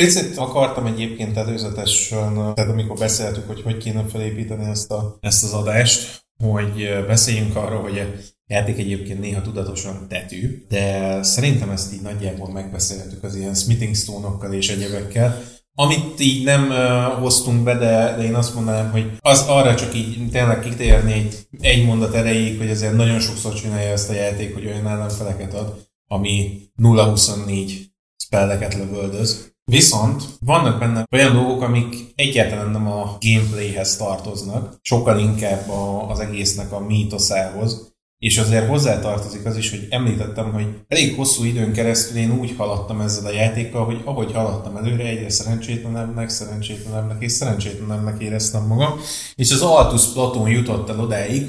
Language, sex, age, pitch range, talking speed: Hungarian, male, 20-39, 105-120 Hz, 150 wpm